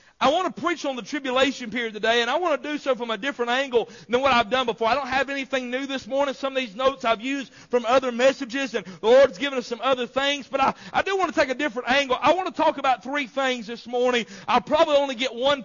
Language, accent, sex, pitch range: English, American, male, 245-295 Hz